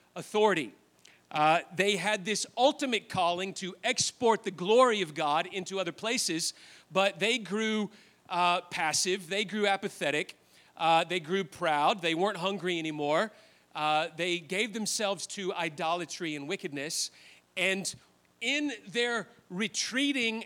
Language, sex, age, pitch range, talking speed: English, male, 40-59, 170-220 Hz, 130 wpm